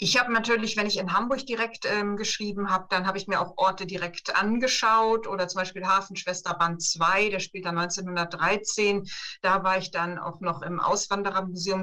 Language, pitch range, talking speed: German, 185-215 Hz, 185 wpm